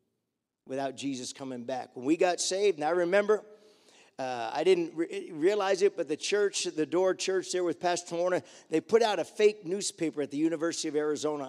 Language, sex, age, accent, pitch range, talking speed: English, male, 50-69, American, 155-240 Hz, 195 wpm